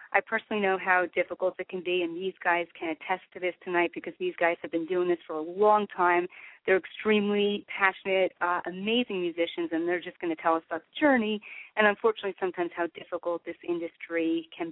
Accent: American